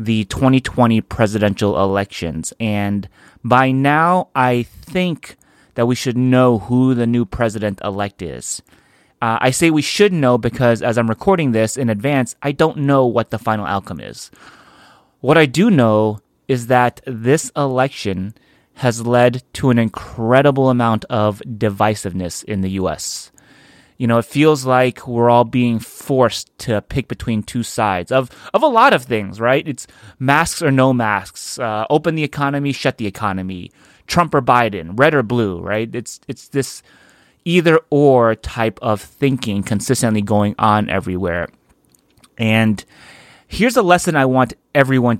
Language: English